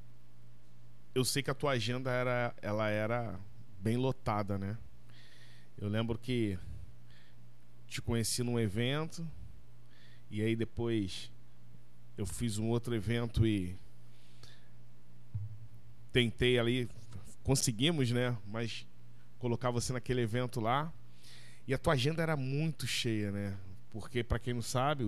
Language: Portuguese